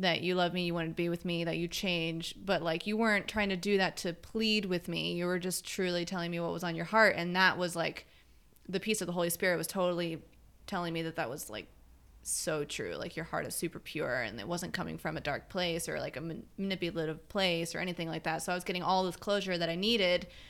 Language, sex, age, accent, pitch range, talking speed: English, female, 20-39, American, 165-200 Hz, 260 wpm